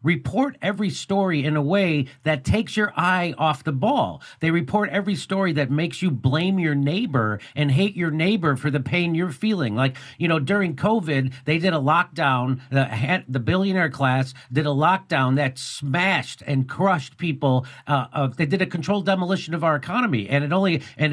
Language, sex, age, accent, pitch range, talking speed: English, male, 50-69, American, 140-185 Hz, 190 wpm